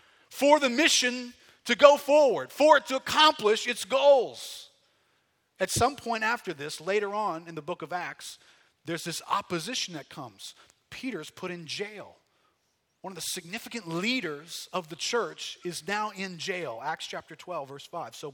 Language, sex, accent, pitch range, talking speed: English, male, American, 150-205 Hz, 165 wpm